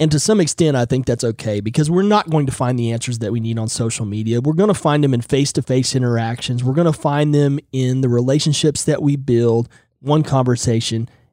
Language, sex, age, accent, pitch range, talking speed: English, male, 30-49, American, 120-155 Hz, 230 wpm